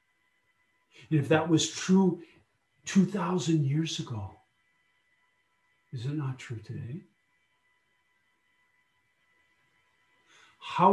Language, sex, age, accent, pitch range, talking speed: English, male, 50-69, American, 130-180 Hz, 75 wpm